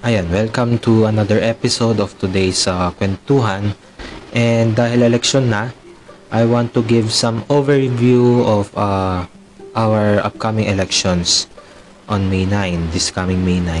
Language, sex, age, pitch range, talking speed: Filipino, male, 20-39, 95-115 Hz, 130 wpm